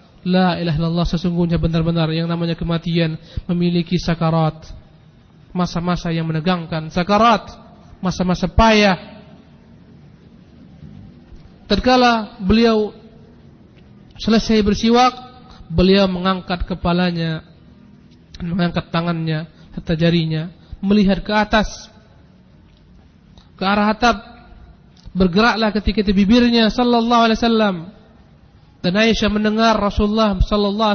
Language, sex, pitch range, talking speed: Indonesian, male, 170-210 Hz, 80 wpm